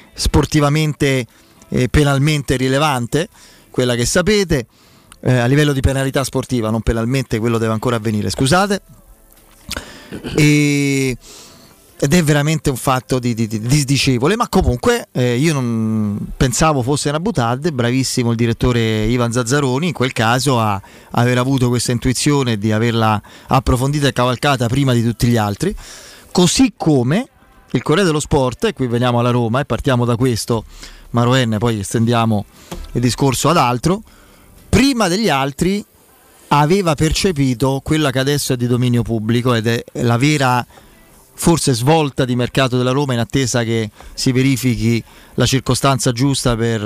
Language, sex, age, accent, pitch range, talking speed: Italian, male, 30-49, native, 120-150 Hz, 145 wpm